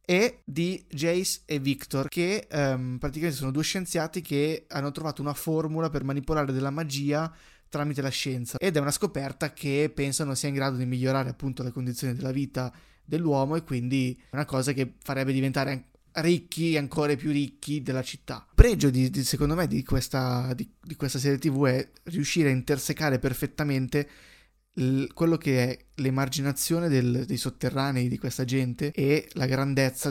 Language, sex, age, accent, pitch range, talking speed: Italian, male, 20-39, native, 135-160 Hz, 165 wpm